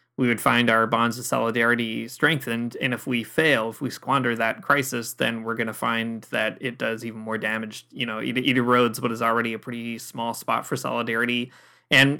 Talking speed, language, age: 210 wpm, English, 20-39